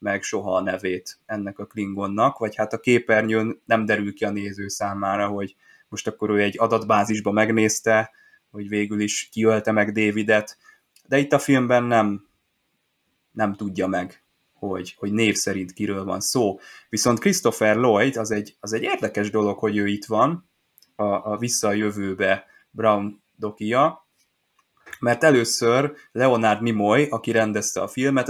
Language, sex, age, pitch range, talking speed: Hungarian, male, 20-39, 105-120 Hz, 145 wpm